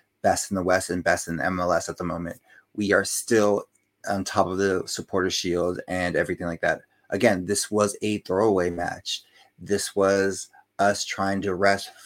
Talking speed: 180 wpm